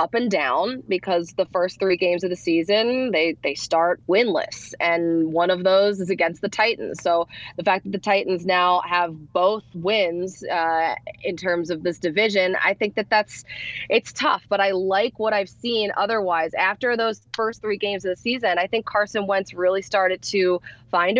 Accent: American